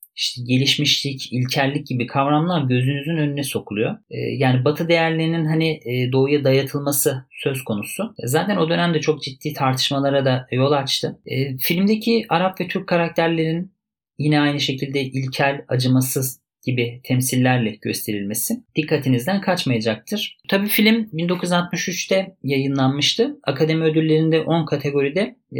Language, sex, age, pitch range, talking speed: Turkish, male, 40-59, 130-170 Hz, 115 wpm